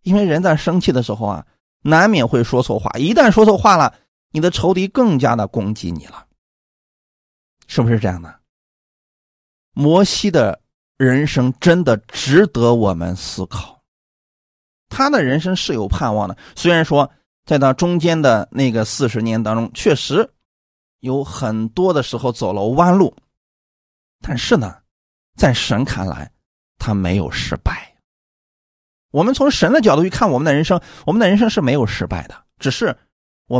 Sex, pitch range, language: male, 105-180 Hz, Chinese